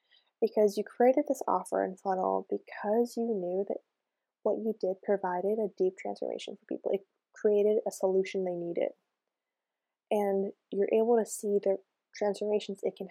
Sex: female